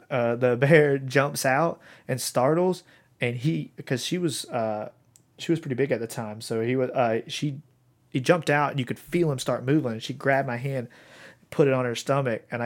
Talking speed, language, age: 220 wpm, English, 30-49